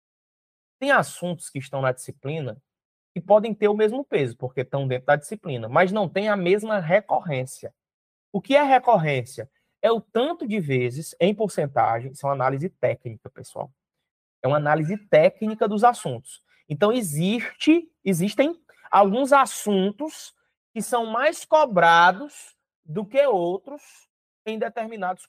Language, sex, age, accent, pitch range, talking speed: Portuguese, male, 20-39, Brazilian, 145-225 Hz, 140 wpm